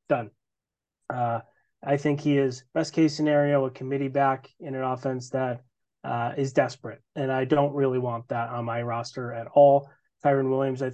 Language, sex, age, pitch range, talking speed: English, male, 20-39, 130-150 Hz, 180 wpm